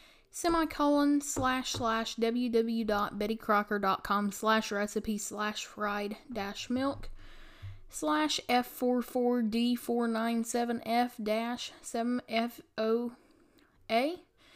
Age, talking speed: 10-29, 115 wpm